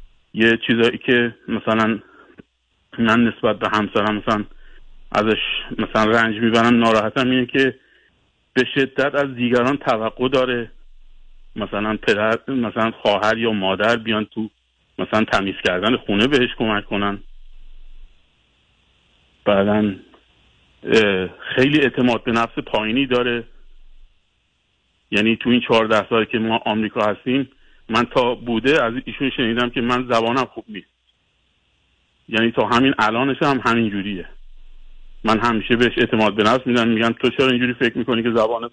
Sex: male